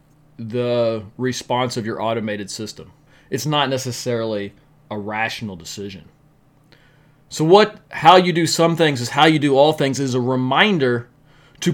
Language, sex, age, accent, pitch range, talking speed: English, male, 30-49, American, 130-160 Hz, 150 wpm